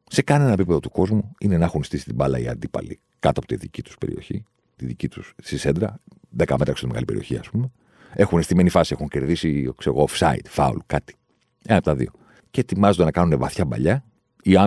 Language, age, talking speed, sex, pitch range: Greek, 40-59, 205 wpm, male, 85-125 Hz